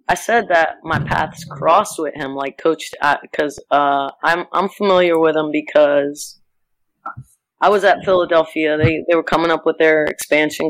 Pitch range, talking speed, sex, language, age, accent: 145-165 Hz, 170 wpm, female, English, 20-39, American